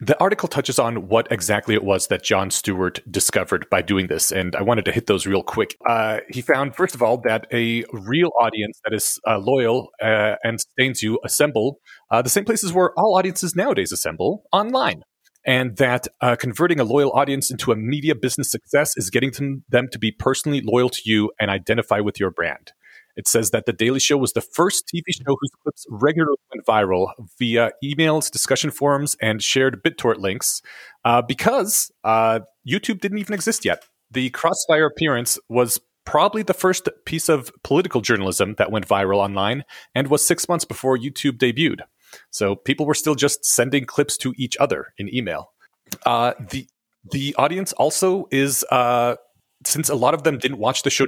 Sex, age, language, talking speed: male, 30-49, English, 190 wpm